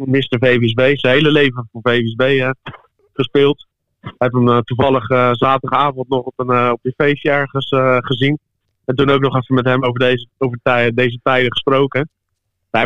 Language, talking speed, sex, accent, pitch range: Dutch, 180 wpm, male, Dutch, 125-145 Hz